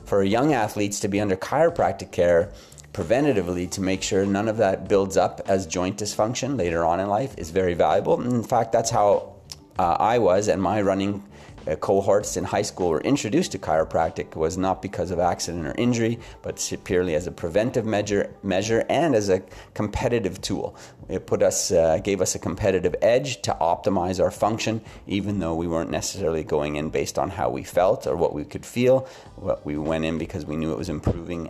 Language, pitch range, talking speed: English, 90-115 Hz, 205 wpm